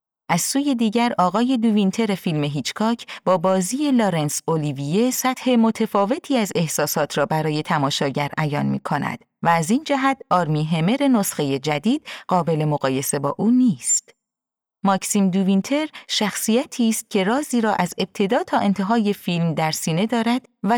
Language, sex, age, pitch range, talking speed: Persian, female, 30-49, 165-245 Hz, 145 wpm